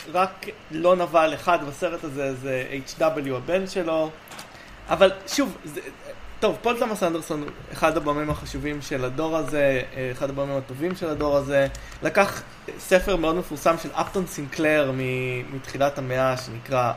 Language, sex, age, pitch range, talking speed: Hebrew, male, 20-39, 135-170 Hz, 135 wpm